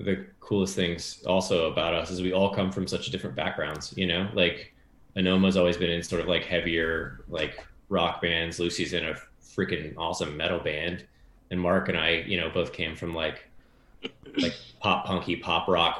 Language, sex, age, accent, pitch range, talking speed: English, male, 20-39, American, 85-95 Hz, 190 wpm